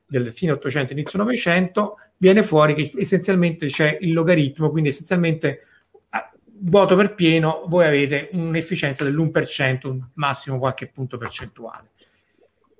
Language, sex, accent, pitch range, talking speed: Italian, male, native, 135-175 Hz, 125 wpm